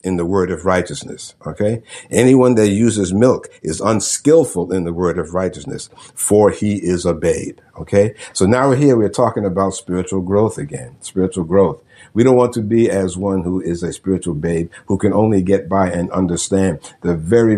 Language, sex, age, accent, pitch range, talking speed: English, male, 60-79, American, 90-115 Hz, 190 wpm